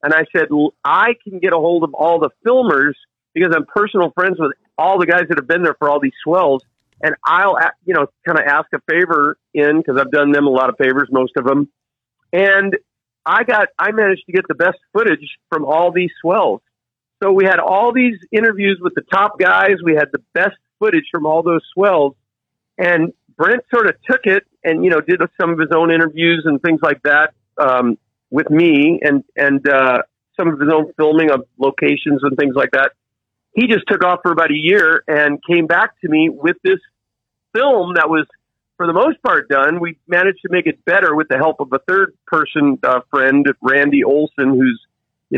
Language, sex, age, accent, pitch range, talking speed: English, male, 50-69, American, 140-185 Hz, 215 wpm